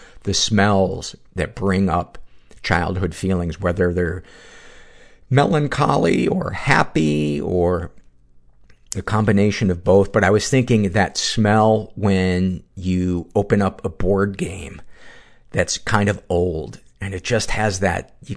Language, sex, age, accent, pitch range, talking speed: English, male, 50-69, American, 85-105 Hz, 130 wpm